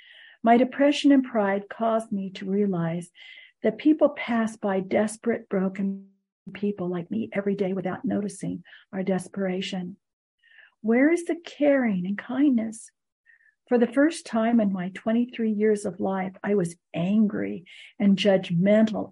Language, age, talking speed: English, 50-69, 140 wpm